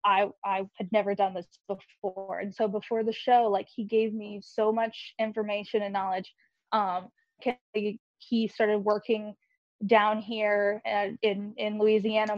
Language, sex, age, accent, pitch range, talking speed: English, female, 20-39, American, 210-245 Hz, 155 wpm